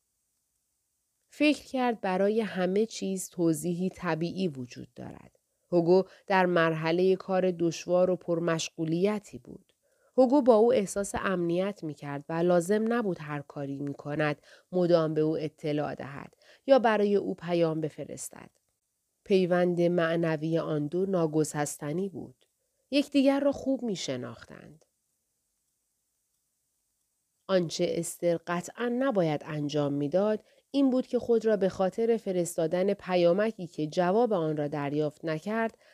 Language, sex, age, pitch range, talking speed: Persian, female, 30-49, 160-200 Hz, 125 wpm